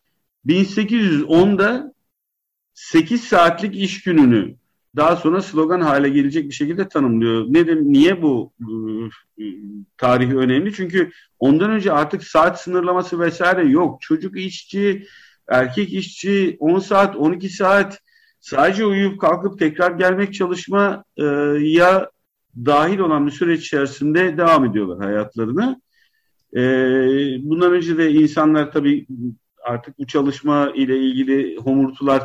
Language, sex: Turkish, male